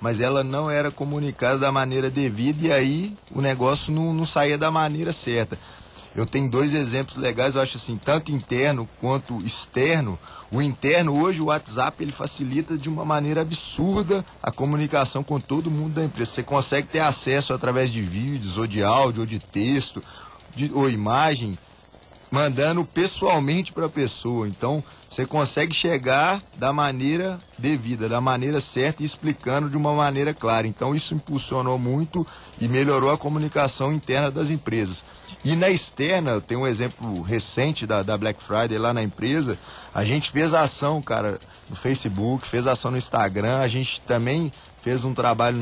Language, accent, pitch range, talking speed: Portuguese, Brazilian, 120-150 Hz, 165 wpm